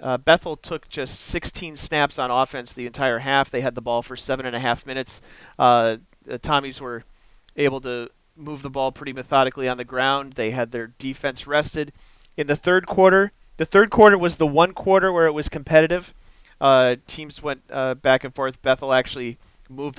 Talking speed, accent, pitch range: 200 wpm, American, 120-150 Hz